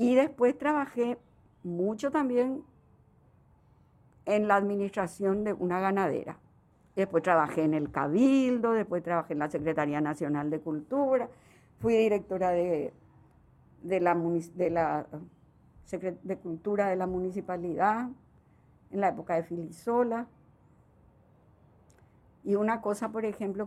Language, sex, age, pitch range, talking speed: Spanish, female, 50-69, 170-215 Hz, 115 wpm